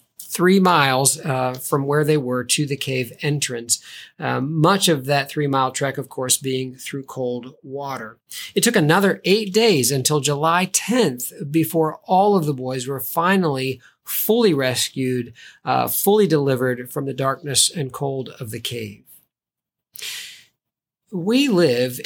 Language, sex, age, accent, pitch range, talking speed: English, male, 40-59, American, 140-195 Hz, 145 wpm